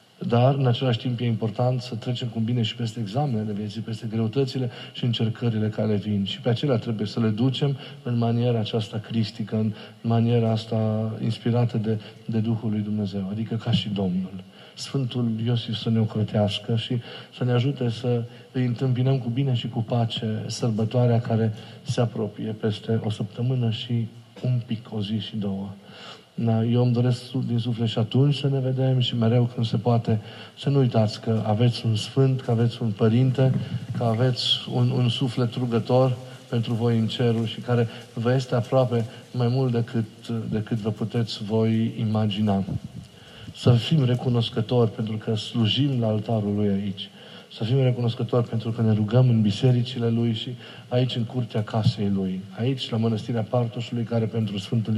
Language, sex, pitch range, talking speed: Romanian, male, 110-125 Hz, 170 wpm